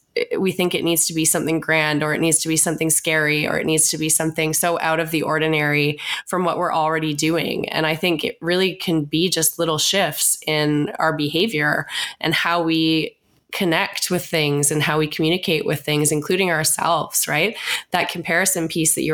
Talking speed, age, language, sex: 200 wpm, 20-39, English, female